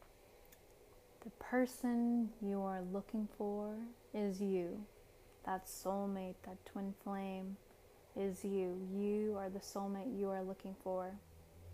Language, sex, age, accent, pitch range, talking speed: English, female, 10-29, American, 190-210 Hz, 120 wpm